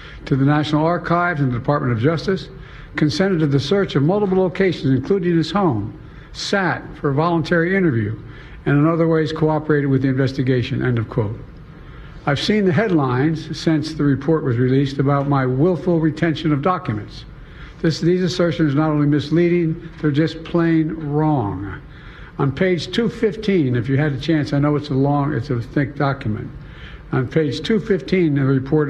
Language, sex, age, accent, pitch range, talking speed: English, male, 60-79, American, 135-165 Hz, 170 wpm